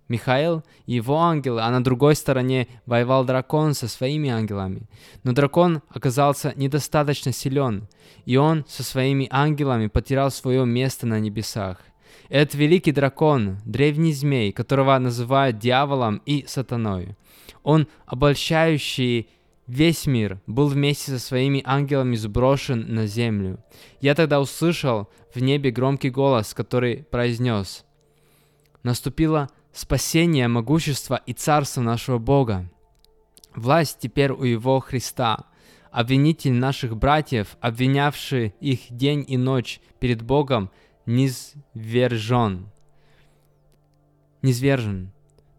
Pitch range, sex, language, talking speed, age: 120-145 Hz, male, Russian, 110 wpm, 20-39